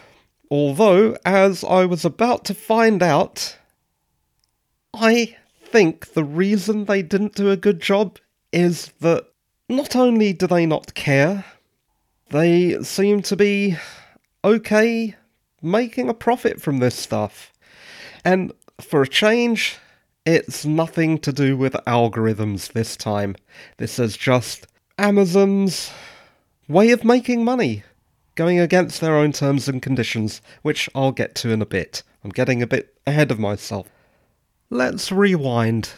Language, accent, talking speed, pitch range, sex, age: English, British, 135 wpm, 130-200 Hz, male, 30-49